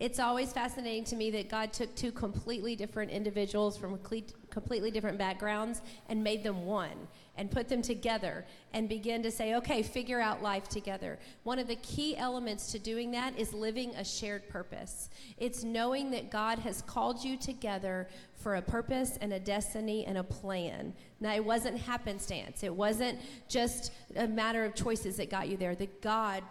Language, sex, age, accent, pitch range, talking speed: English, female, 40-59, American, 200-240 Hz, 185 wpm